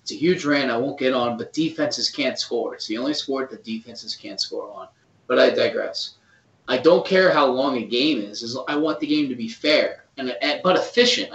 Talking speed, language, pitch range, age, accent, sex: 235 wpm, English, 125-170 Hz, 20-39, American, male